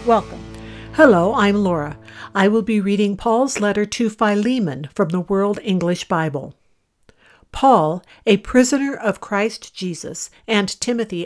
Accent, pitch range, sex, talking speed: American, 180-230 Hz, female, 135 wpm